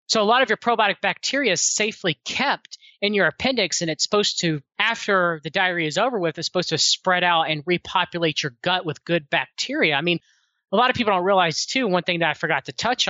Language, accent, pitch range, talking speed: English, American, 160-210 Hz, 235 wpm